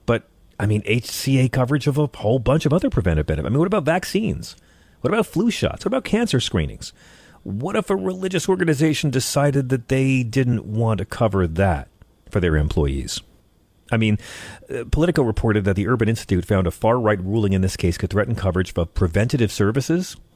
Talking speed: 185 wpm